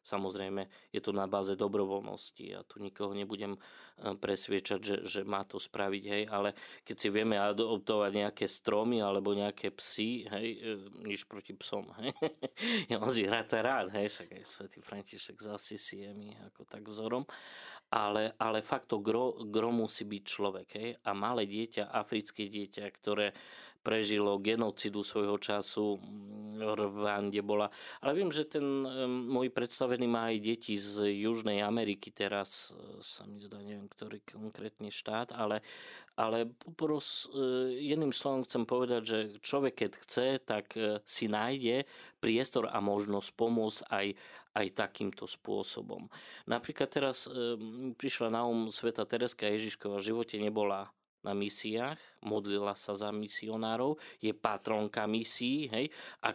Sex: male